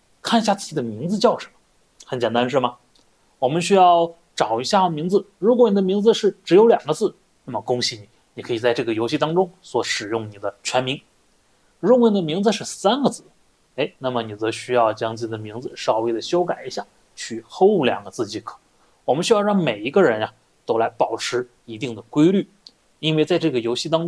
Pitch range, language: 125-210 Hz, Chinese